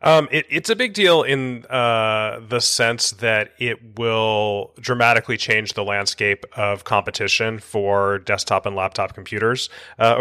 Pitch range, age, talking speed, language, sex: 100-120 Hz, 30-49, 145 wpm, English, male